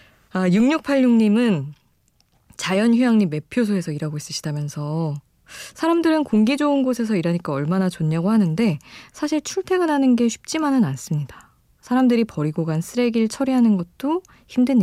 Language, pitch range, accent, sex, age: Korean, 155-225 Hz, native, female, 20-39